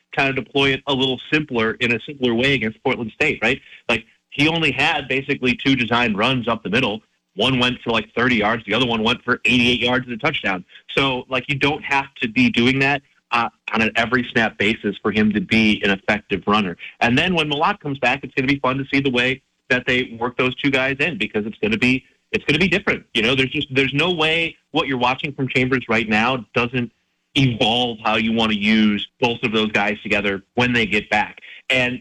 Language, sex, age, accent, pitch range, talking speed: English, male, 30-49, American, 115-140 Hz, 240 wpm